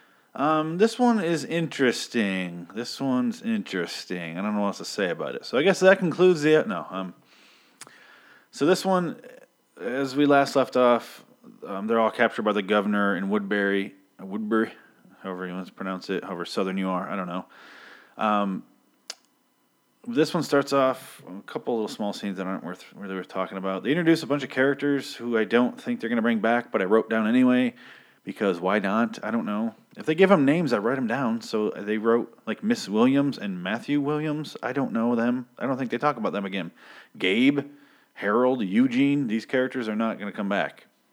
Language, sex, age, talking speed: English, male, 30-49, 205 wpm